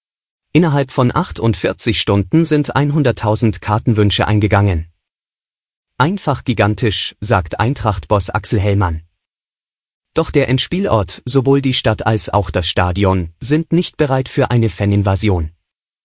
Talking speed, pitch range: 110 wpm, 100-130 Hz